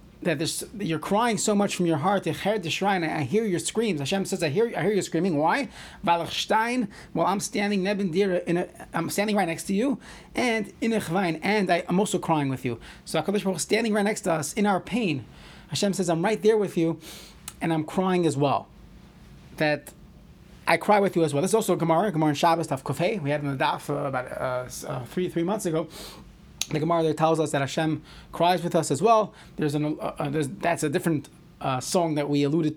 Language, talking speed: English, 225 wpm